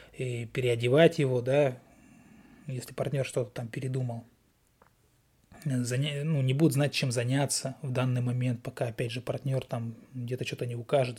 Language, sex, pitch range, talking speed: Russian, male, 125-160 Hz, 150 wpm